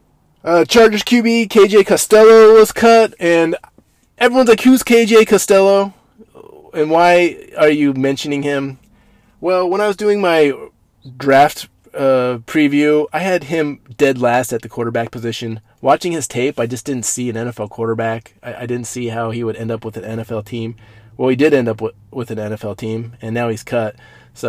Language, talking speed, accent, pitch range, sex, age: English, 185 wpm, American, 115-165 Hz, male, 20-39